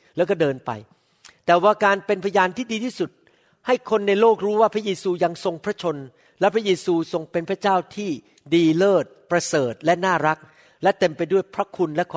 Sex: male